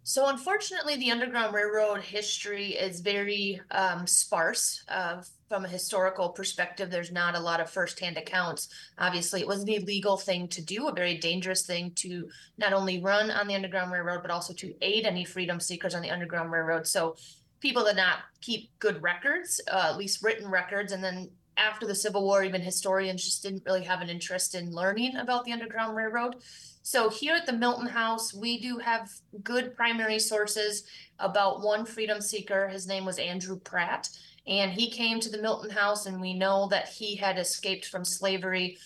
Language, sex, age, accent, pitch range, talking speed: English, female, 20-39, American, 185-220 Hz, 190 wpm